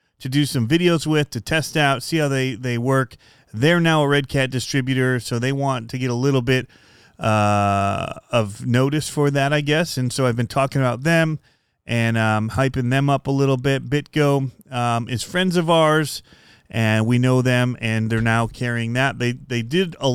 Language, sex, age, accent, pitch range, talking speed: English, male, 30-49, American, 115-140 Hz, 205 wpm